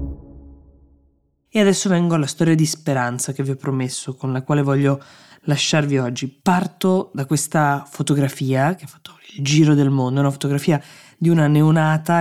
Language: Italian